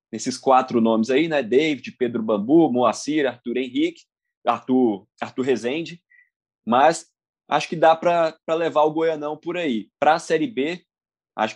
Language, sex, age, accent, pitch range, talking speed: Portuguese, male, 20-39, Brazilian, 120-155 Hz, 150 wpm